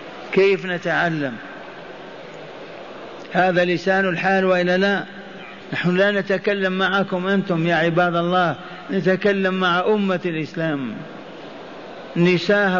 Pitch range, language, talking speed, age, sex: 175-195 Hz, Arabic, 95 wpm, 50-69, male